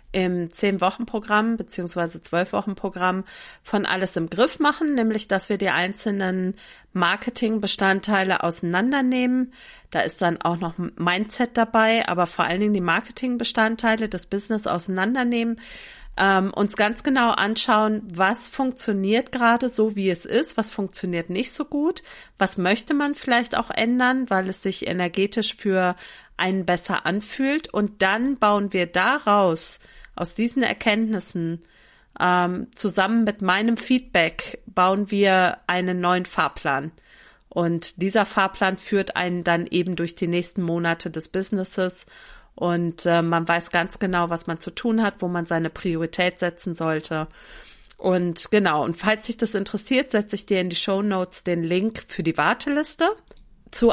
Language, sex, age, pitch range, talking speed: German, female, 40-59, 175-225 Hz, 145 wpm